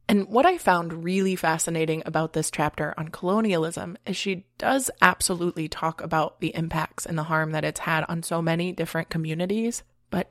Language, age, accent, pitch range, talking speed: English, 20-39, American, 165-195 Hz, 180 wpm